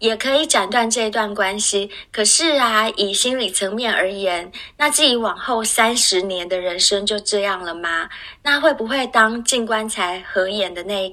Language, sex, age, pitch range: Chinese, female, 20-39, 190-235 Hz